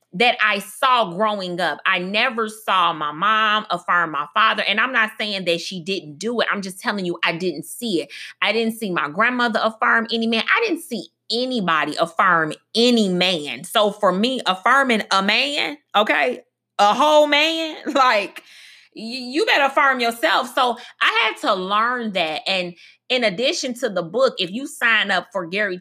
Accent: American